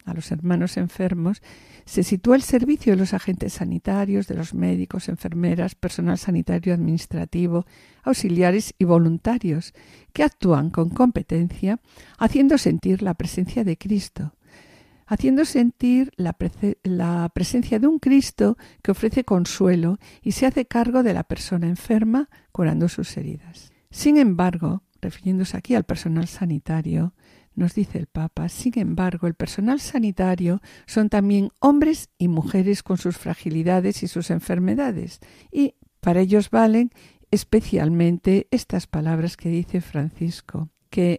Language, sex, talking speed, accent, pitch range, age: Spanish, female, 135 wpm, Spanish, 170-220 Hz, 50-69